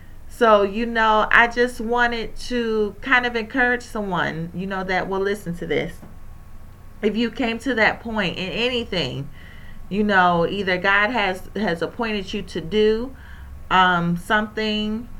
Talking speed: 150 wpm